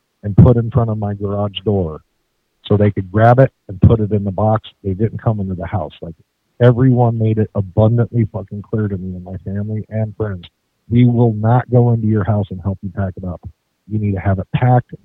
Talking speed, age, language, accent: 230 wpm, 50-69, English, American